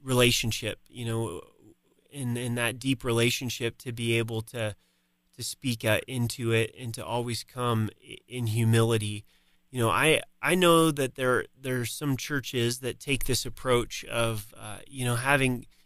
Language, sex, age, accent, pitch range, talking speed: English, male, 30-49, American, 115-130 Hz, 160 wpm